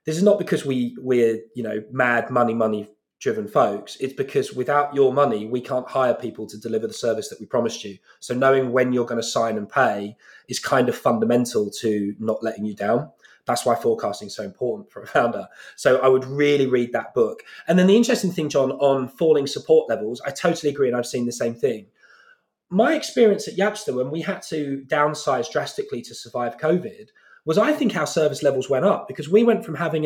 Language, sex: English, male